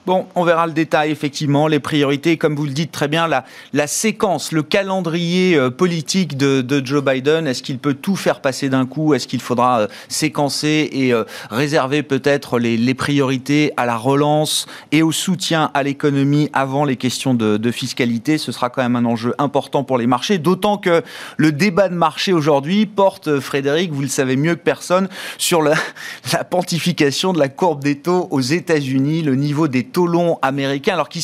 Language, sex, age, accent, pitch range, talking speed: French, male, 30-49, French, 135-170 Hz, 205 wpm